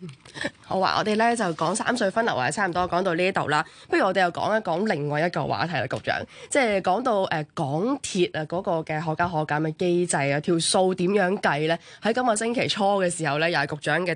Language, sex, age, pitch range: Chinese, female, 20-39, 155-210 Hz